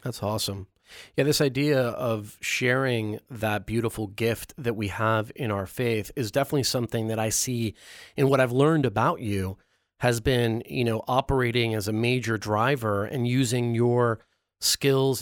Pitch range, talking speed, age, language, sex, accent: 110-140 Hz, 160 wpm, 30-49, English, male, American